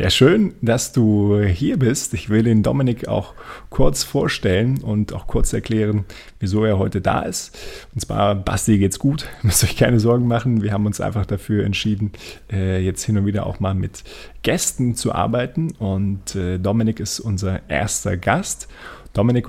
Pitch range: 95-115 Hz